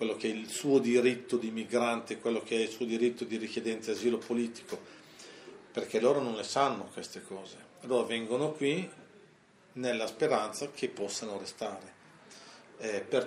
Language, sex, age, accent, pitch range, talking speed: Italian, male, 40-59, native, 115-140 Hz, 170 wpm